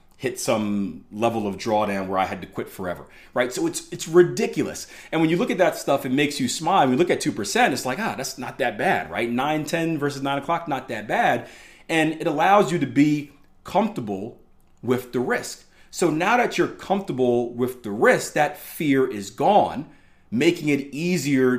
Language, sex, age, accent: English, male, 40-59, American